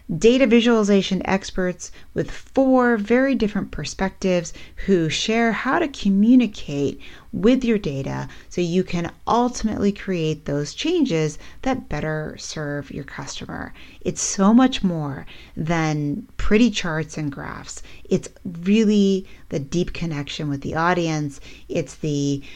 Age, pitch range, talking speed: 30-49, 150-210 Hz, 125 wpm